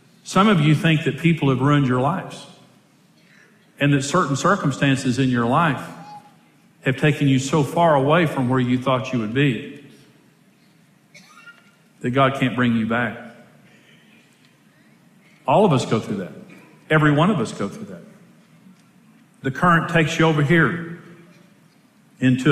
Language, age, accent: English, 50-69, American